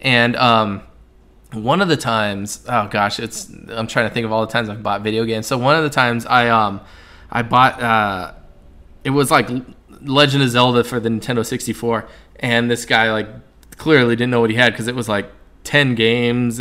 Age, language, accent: 20-39, English, American